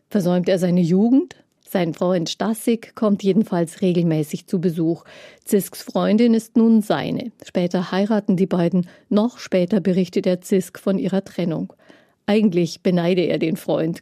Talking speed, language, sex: 145 wpm, German, female